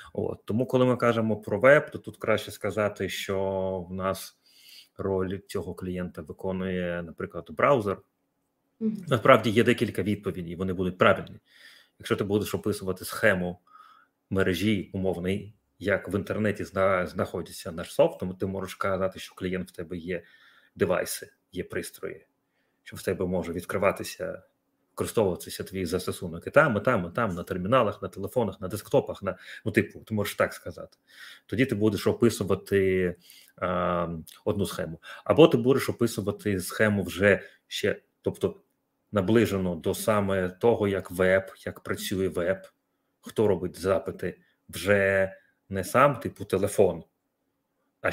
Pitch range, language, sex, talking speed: 90-105 Hz, Ukrainian, male, 140 wpm